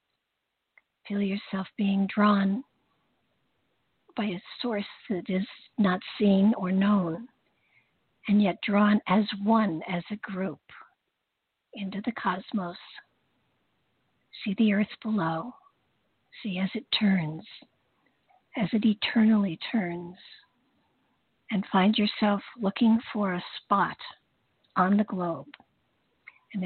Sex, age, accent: female, 50-69, American